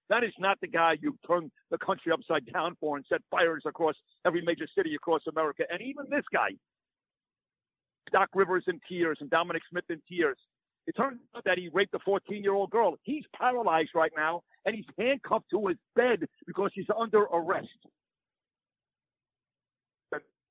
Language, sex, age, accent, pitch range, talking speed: English, male, 50-69, American, 165-210 Hz, 170 wpm